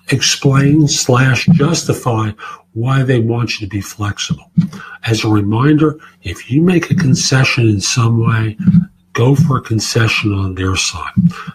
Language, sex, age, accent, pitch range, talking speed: English, male, 50-69, American, 115-155 Hz, 145 wpm